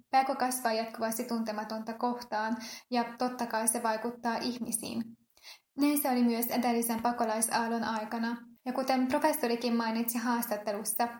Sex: female